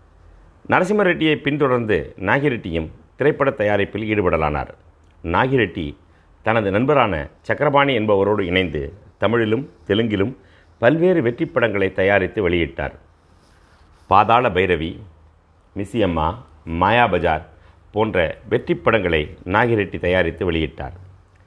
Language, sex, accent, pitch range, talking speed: Tamil, male, native, 85-135 Hz, 85 wpm